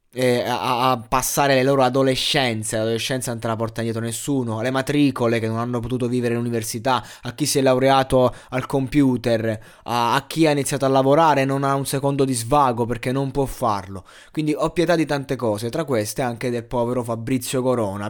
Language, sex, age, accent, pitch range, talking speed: Italian, male, 20-39, native, 120-140 Hz, 190 wpm